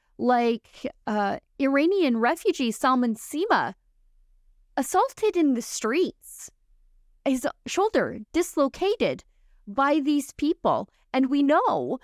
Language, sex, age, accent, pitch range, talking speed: English, female, 20-39, American, 190-270 Hz, 95 wpm